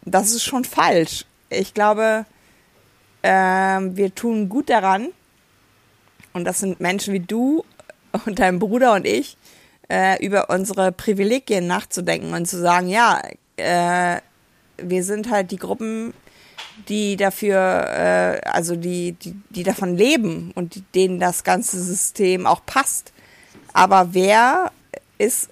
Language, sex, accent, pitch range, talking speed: German, female, German, 180-210 Hz, 130 wpm